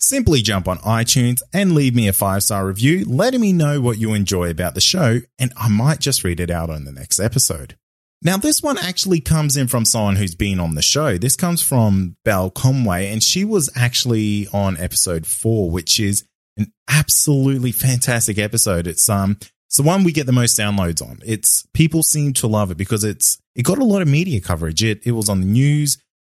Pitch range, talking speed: 95-135 Hz, 215 wpm